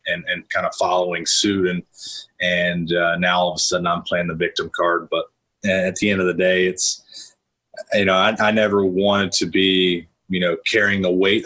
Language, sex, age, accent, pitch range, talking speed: English, male, 30-49, American, 95-105 Hz, 210 wpm